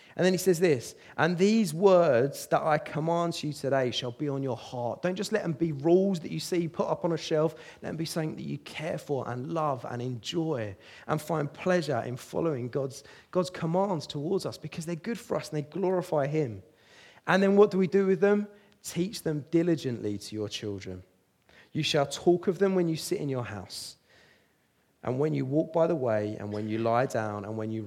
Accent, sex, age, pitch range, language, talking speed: British, male, 30-49, 120-170 Hz, English, 225 wpm